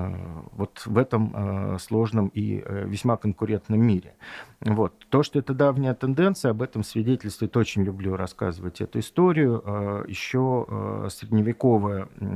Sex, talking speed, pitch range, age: male, 115 wpm, 100-120 Hz, 40-59